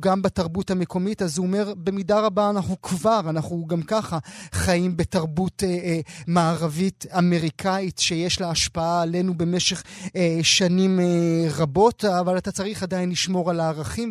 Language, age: Hebrew, 30-49